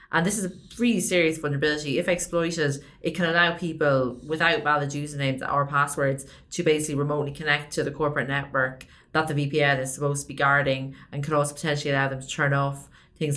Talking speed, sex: 200 wpm, female